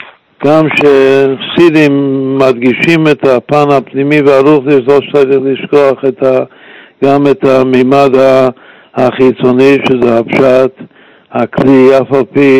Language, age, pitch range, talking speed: Hebrew, 60-79, 120-140 Hz, 110 wpm